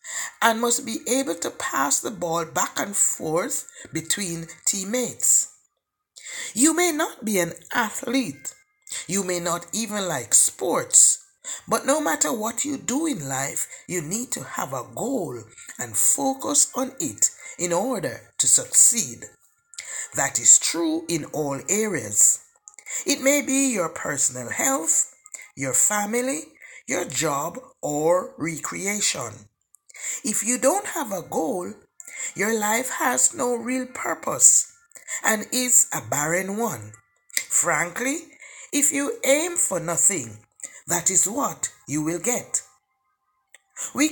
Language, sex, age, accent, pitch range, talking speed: English, male, 60-79, Nigerian, 180-290 Hz, 130 wpm